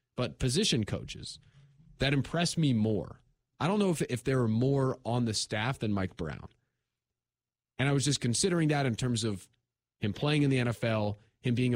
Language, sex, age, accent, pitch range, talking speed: English, male, 30-49, American, 110-140 Hz, 190 wpm